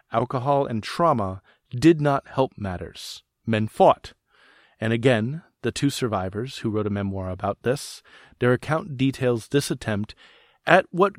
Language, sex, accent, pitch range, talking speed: English, male, American, 105-140 Hz, 145 wpm